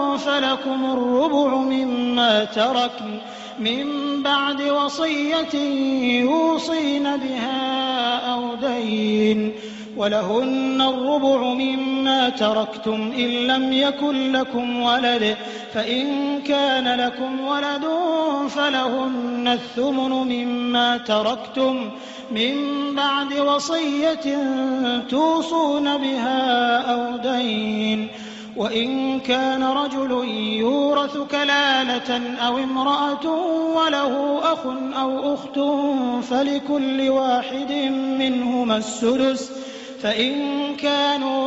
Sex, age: male, 30-49